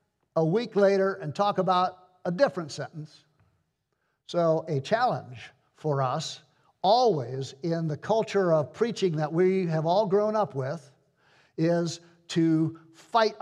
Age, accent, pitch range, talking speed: 50-69, American, 145-185 Hz, 135 wpm